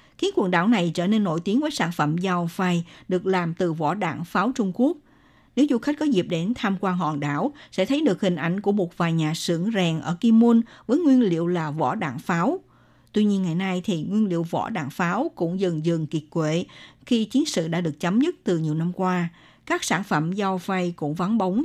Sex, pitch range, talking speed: female, 170-225 Hz, 240 wpm